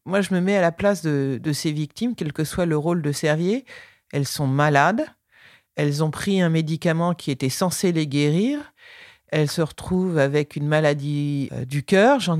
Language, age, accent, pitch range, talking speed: French, 40-59, French, 155-215 Hz, 200 wpm